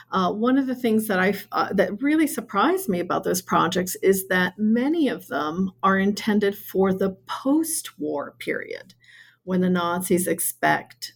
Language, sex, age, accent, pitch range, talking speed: English, female, 50-69, American, 170-220 Hz, 165 wpm